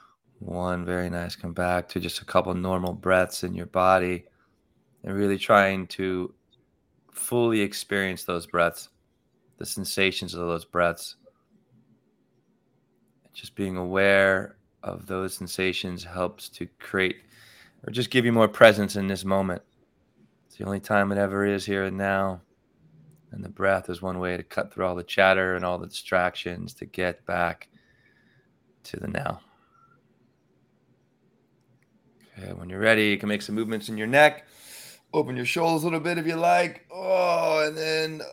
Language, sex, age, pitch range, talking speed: English, male, 20-39, 95-130 Hz, 160 wpm